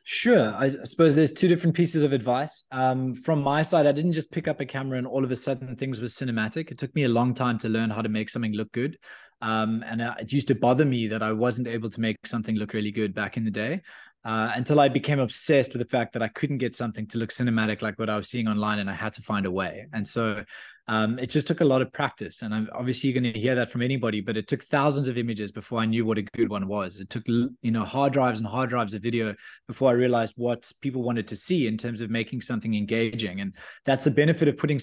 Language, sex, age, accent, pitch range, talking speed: English, male, 20-39, Australian, 110-140 Hz, 270 wpm